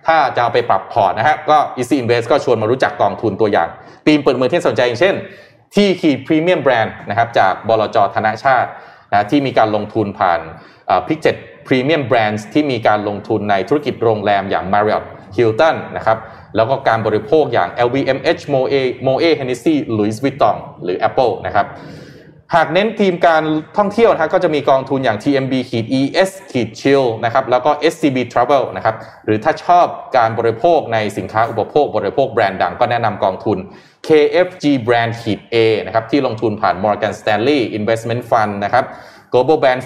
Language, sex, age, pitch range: Thai, male, 20-39, 110-150 Hz